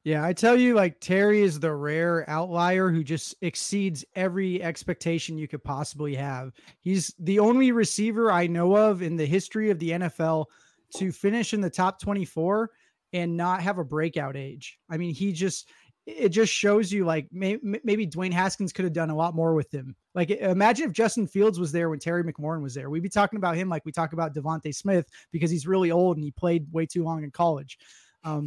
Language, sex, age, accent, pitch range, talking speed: English, male, 20-39, American, 165-205 Hz, 215 wpm